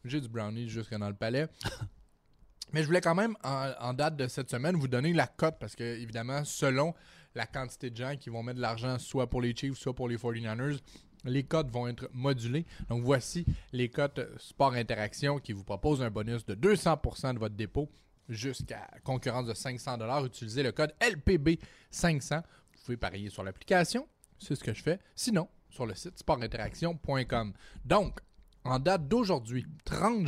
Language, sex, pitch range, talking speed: French, male, 115-155 Hz, 180 wpm